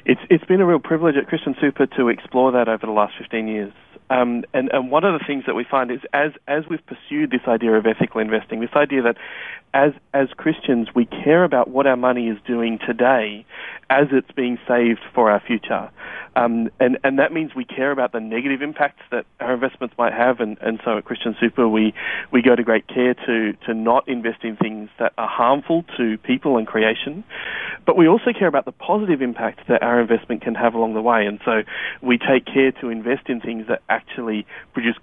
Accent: Australian